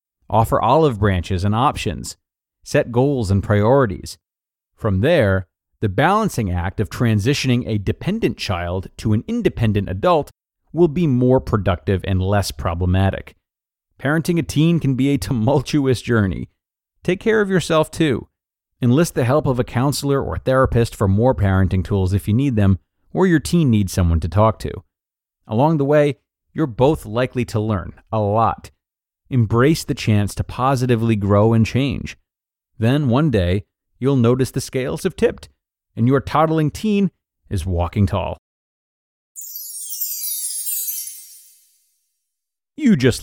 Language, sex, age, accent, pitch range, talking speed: English, male, 30-49, American, 95-140 Hz, 145 wpm